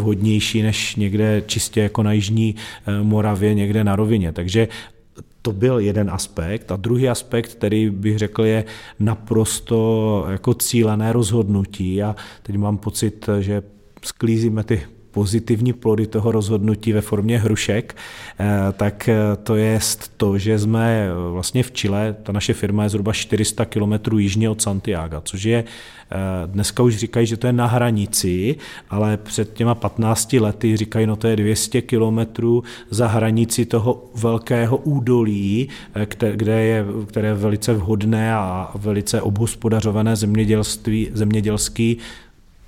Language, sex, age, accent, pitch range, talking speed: Czech, male, 40-59, native, 105-115 Hz, 135 wpm